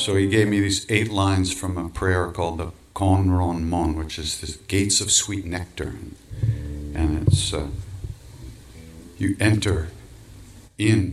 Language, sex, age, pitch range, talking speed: English, male, 60-79, 85-105 Hz, 140 wpm